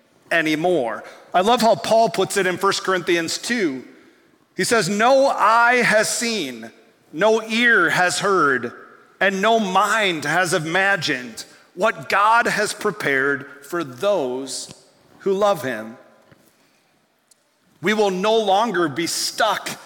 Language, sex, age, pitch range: English, male, 40-59, 170-230 Hz